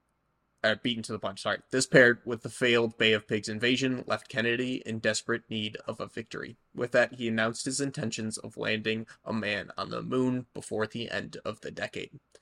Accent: American